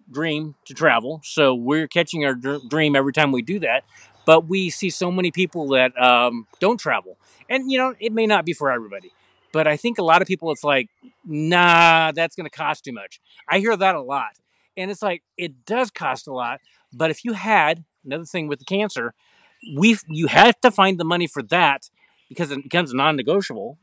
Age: 40-59